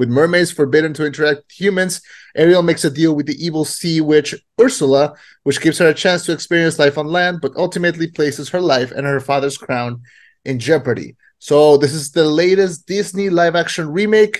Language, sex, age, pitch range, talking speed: English, male, 30-49, 140-185 Hz, 190 wpm